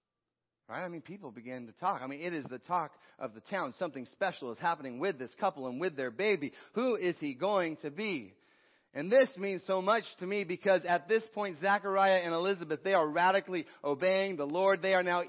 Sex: male